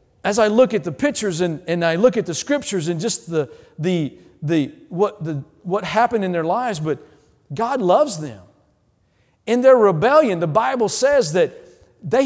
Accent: American